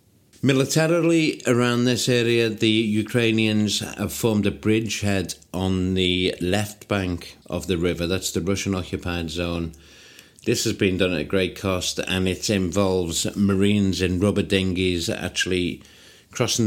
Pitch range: 85-100 Hz